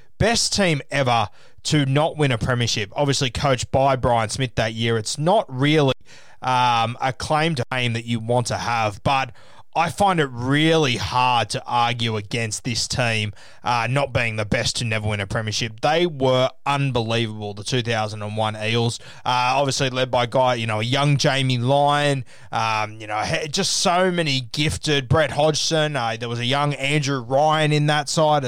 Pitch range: 120-155 Hz